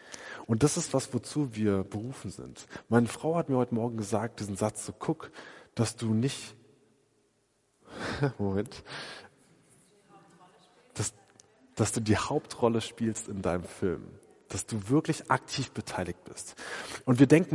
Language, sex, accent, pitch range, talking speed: German, male, German, 110-145 Hz, 145 wpm